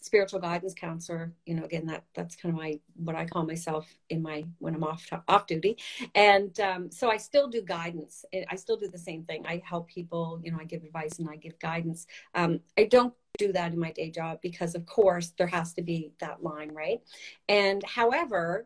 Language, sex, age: English, female, 40-59